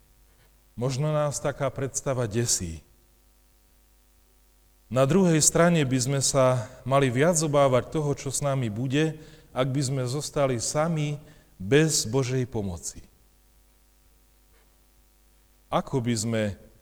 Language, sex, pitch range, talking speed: Slovak, male, 115-145 Hz, 105 wpm